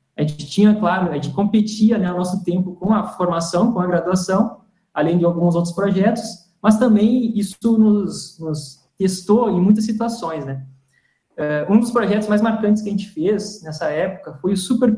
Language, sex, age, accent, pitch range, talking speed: Portuguese, male, 20-39, Brazilian, 155-210 Hz, 180 wpm